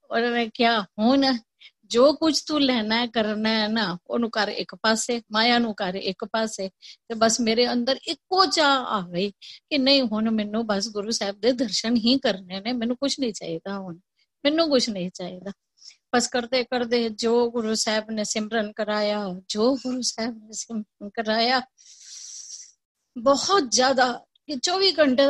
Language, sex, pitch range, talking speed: Punjabi, female, 220-265 Hz, 155 wpm